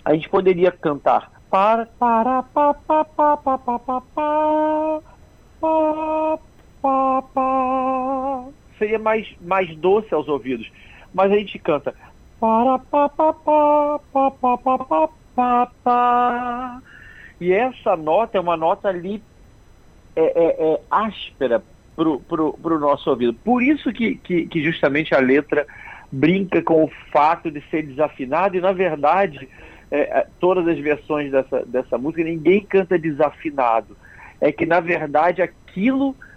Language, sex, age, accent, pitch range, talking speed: Portuguese, male, 50-69, Brazilian, 165-245 Hz, 105 wpm